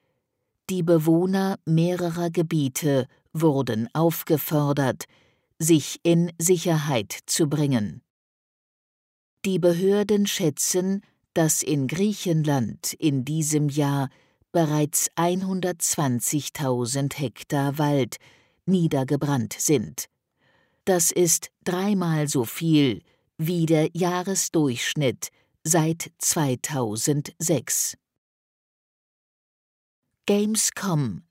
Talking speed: 70 wpm